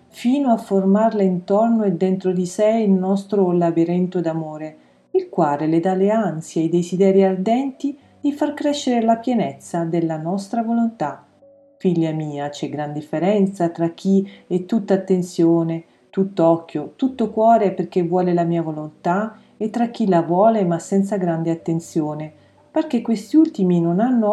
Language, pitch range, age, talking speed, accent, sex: Italian, 165-215 Hz, 40-59, 155 wpm, native, female